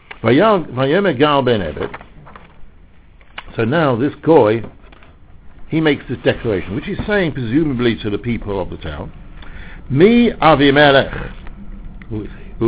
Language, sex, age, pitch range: English, male, 60-79, 105-175 Hz